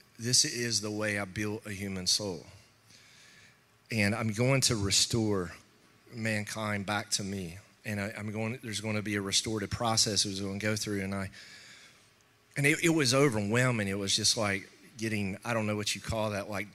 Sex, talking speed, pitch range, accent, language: male, 195 wpm, 105-125 Hz, American, English